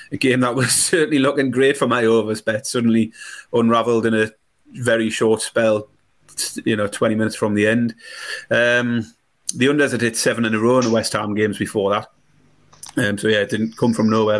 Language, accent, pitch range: English, British, 110-125 Hz